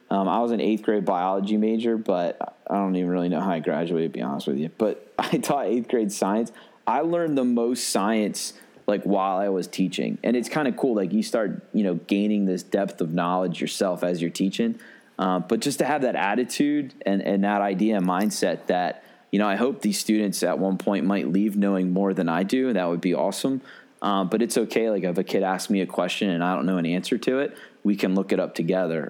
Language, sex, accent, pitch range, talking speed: English, male, American, 90-100 Hz, 245 wpm